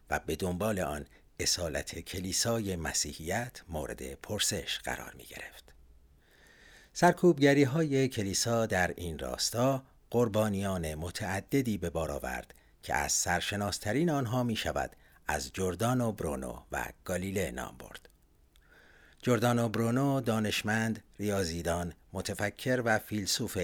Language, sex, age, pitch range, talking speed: Persian, male, 50-69, 85-120 Hz, 110 wpm